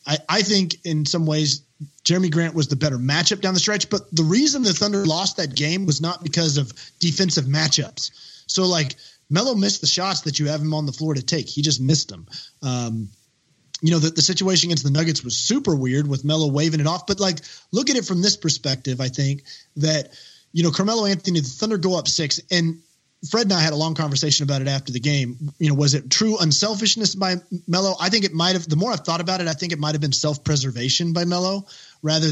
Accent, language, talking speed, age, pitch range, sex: American, English, 230 wpm, 30-49, 145-185 Hz, male